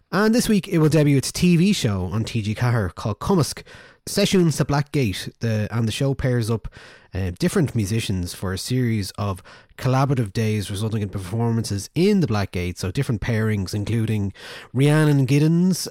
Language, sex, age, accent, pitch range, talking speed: English, male, 20-39, Irish, 110-155 Hz, 170 wpm